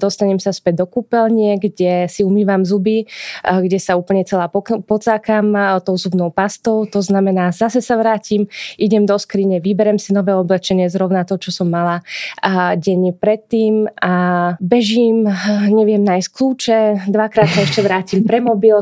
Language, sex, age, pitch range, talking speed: Slovak, female, 20-39, 185-210 Hz, 150 wpm